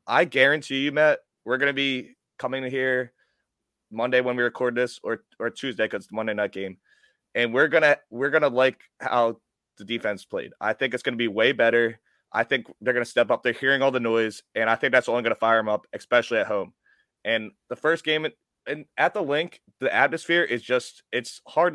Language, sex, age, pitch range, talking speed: English, male, 20-39, 120-160 Hz, 210 wpm